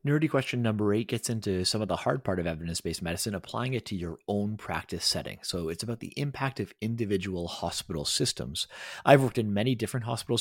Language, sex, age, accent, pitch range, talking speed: English, male, 30-49, American, 95-125 Hz, 210 wpm